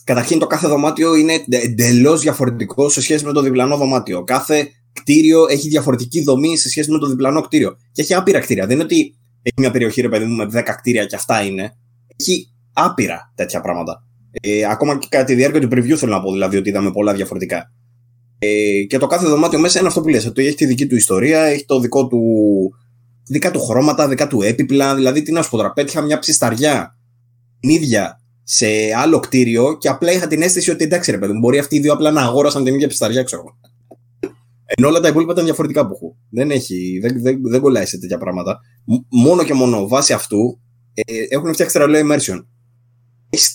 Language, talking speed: Greek, 195 wpm